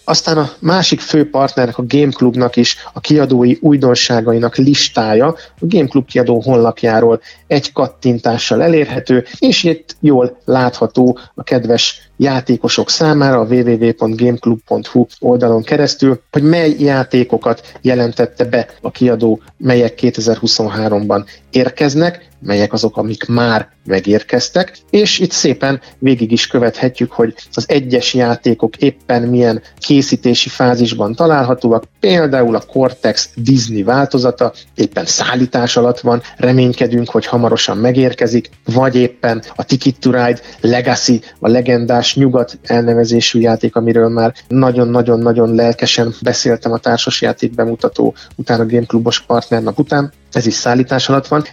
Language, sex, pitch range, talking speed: Hungarian, male, 115-135 Hz, 120 wpm